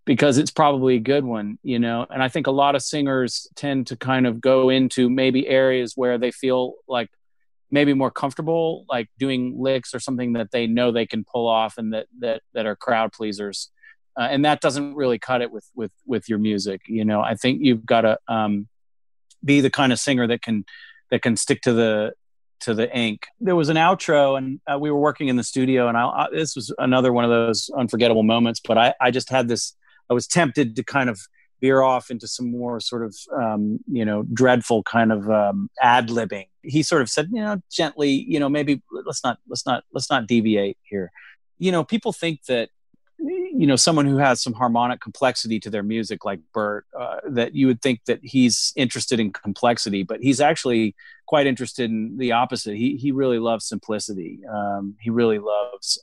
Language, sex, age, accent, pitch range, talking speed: English, male, 40-59, American, 110-140 Hz, 210 wpm